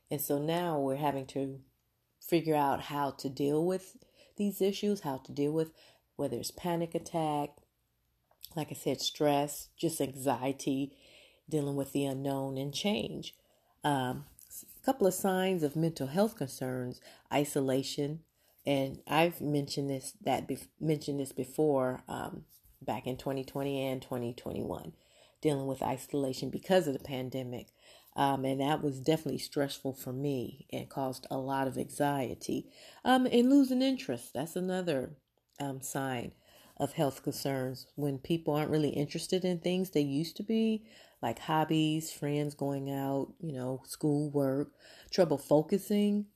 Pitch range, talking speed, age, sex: 135-160 Hz, 150 wpm, 30-49, female